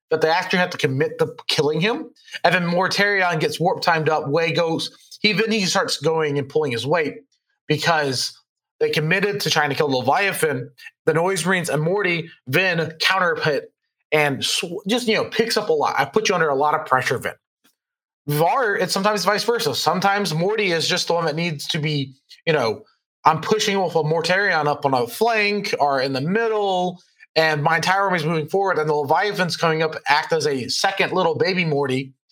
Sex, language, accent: male, English, American